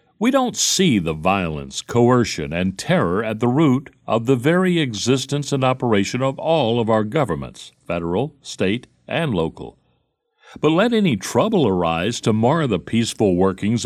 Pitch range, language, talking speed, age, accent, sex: 100-140 Hz, English, 150 wpm, 60-79, American, male